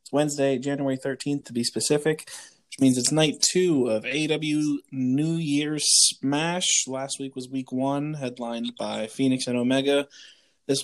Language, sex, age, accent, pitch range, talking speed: English, male, 20-39, American, 125-155 Hz, 155 wpm